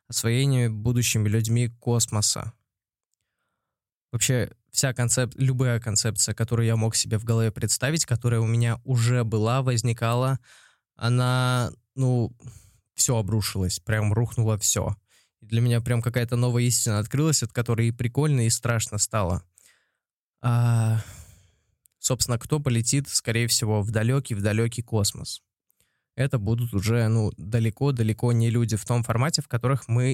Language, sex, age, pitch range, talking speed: Russian, male, 20-39, 110-125 Hz, 135 wpm